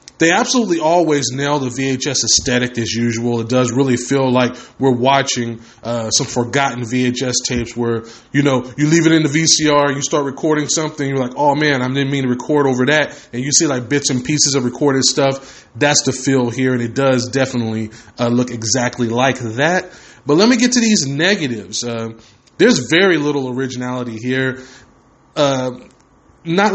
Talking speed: 185 wpm